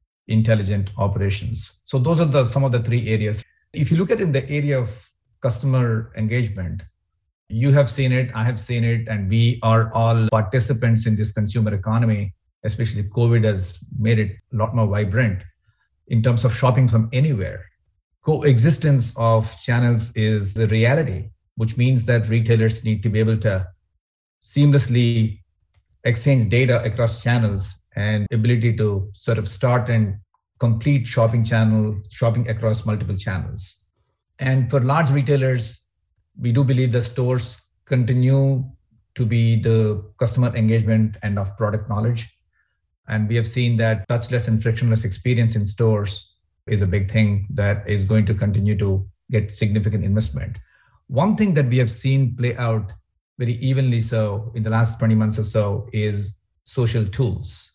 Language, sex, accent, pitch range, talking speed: English, male, Indian, 105-120 Hz, 155 wpm